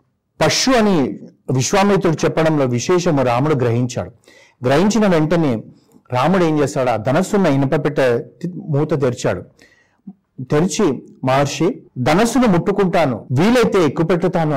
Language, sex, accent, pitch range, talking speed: Telugu, male, native, 125-160 Hz, 100 wpm